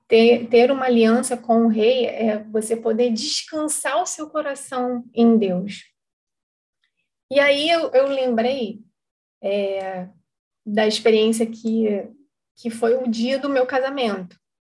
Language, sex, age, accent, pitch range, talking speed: Portuguese, female, 20-39, Brazilian, 210-250 Hz, 130 wpm